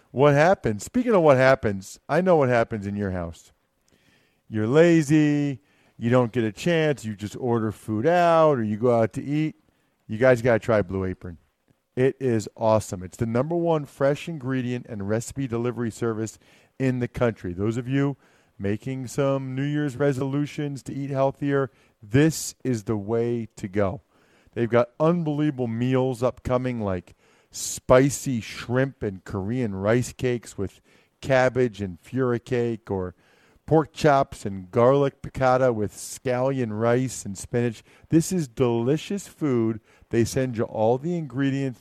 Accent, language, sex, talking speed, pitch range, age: American, English, male, 155 wpm, 110-135 Hz, 50-69